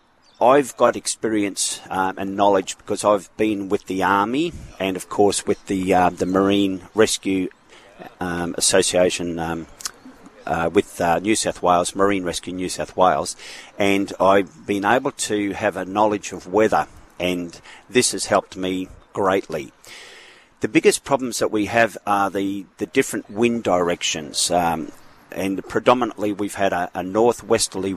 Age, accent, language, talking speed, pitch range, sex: 40-59, Australian, English, 150 wpm, 95-110 Hz, male